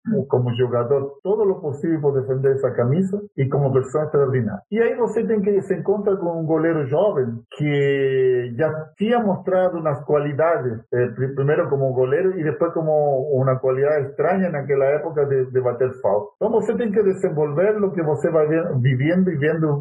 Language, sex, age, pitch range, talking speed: Portuguese, male, 50-69, 130-185 Hz, 180 wpm